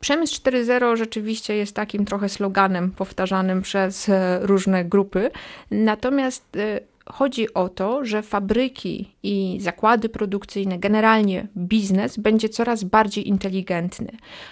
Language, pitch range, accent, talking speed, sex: Polish, 195-225 Hz, native, 110 wpm, female